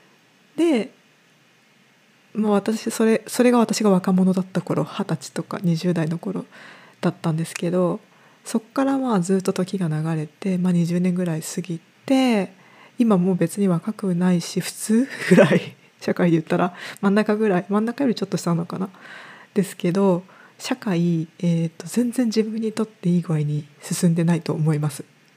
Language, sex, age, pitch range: Japanese, female, 20-39, 170-215 Hz